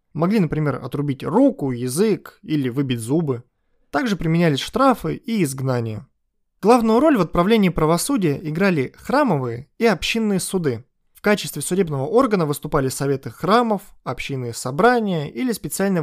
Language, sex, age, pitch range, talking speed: Russian, male, 20-39, 135-205 Hz, 125 wpm